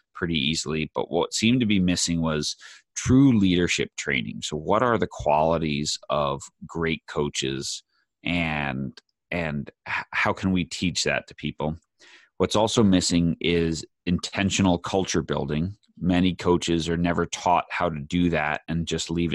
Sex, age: male, 30-49